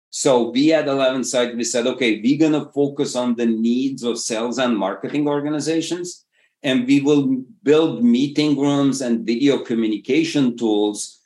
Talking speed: 155 wpm